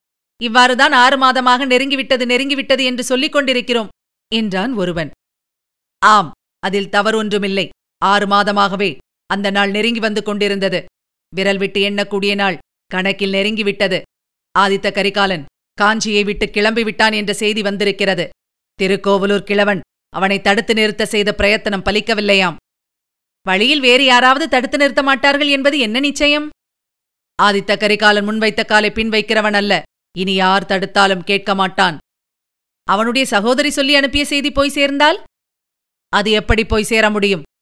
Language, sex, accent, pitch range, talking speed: Tamil, female, native, 200-250 Hz, 120 wpm